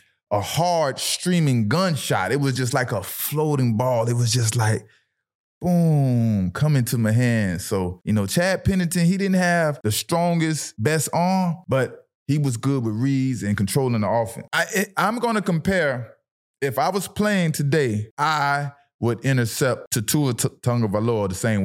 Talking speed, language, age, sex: 160 wpm, English, 20-39, male